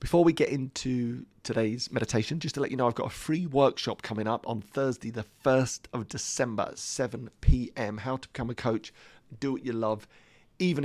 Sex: male